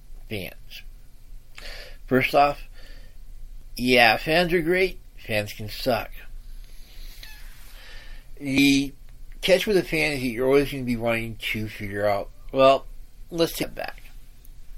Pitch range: 115-145 Hz